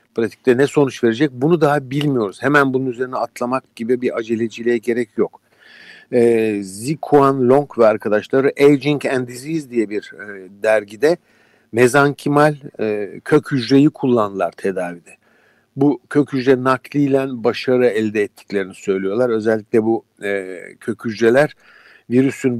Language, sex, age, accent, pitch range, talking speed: Turkish, male, 60-79, native, 110-140 Hz, 125 wpm